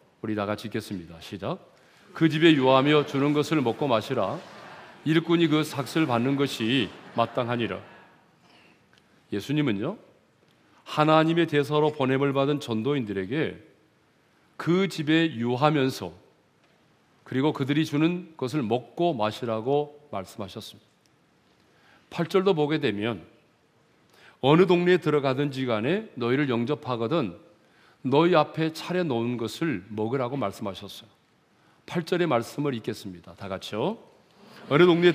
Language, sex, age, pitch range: Korean, male, 40-59, 115-155 Hz